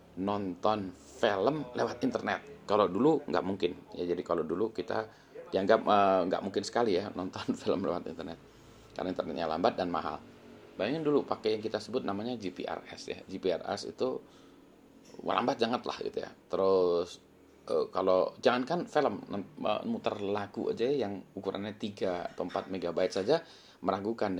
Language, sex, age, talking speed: Indonesian, male, 30-49, 150 wpm